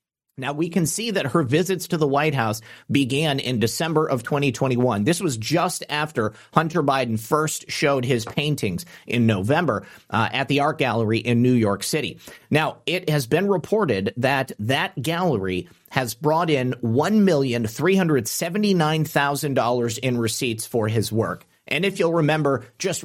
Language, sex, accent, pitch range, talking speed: English, male, American, 120-155 Hz, 155 wpm